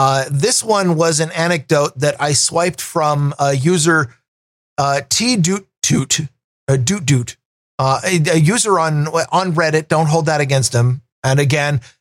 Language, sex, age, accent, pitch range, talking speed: English, male, 40-59, American, 135-175 Hz, 140 wpm